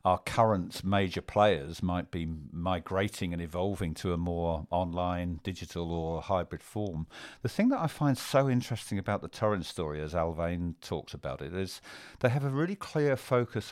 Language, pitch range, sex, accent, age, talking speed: English, 90-110 Hz, male, British, 50-69, 175 wpm